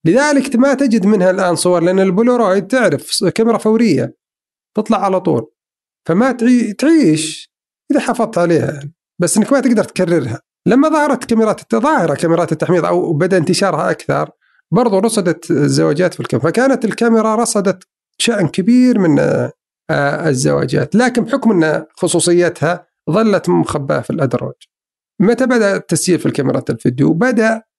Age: 50-69